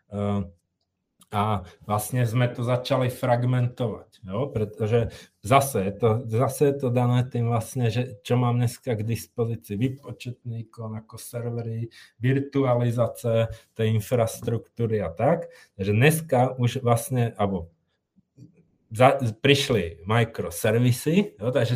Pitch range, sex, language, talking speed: 115-135 Hz, male, Czech, 90 wpm